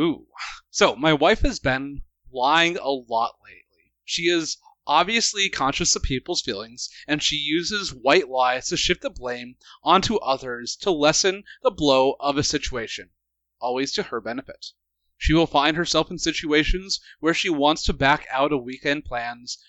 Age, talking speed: 30-49, 160 wpm